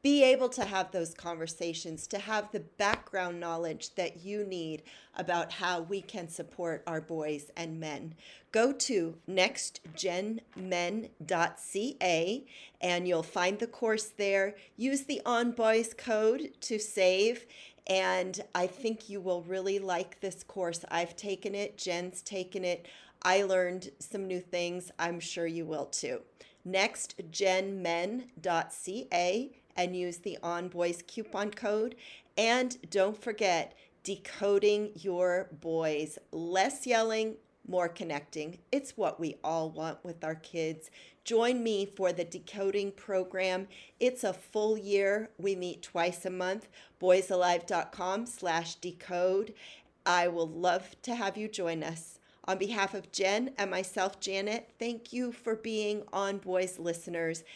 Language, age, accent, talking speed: English, 40-59, American, 135 wpm